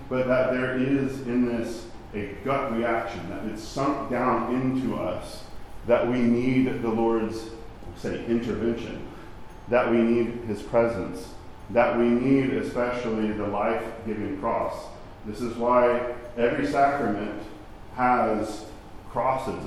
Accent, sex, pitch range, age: American, male, 110-130 Hz, 40-59